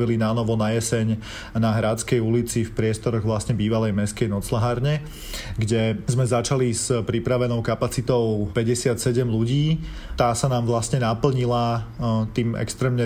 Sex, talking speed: male, 130 wpm